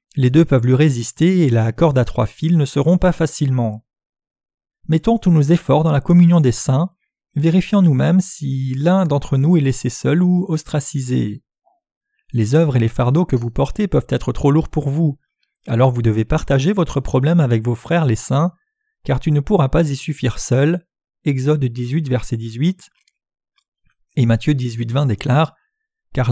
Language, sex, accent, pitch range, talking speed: French, male, French, 120-165 Hz, 180 wpm